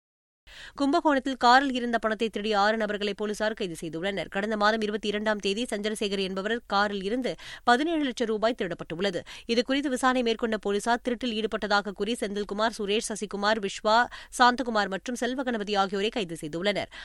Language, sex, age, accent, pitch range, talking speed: Tamil, female, 20-39, native, 200-240 Hz, 140 wpm